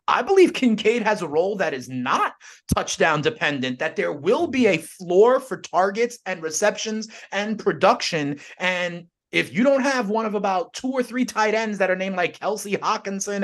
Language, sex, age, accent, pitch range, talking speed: English, male, 30-49, American, 170-230 Hz, 190 wpm